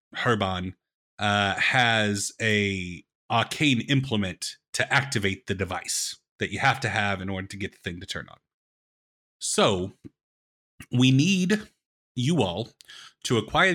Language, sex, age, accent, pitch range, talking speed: English, male, 30-49, American, 100-130 Hz, 135 wpm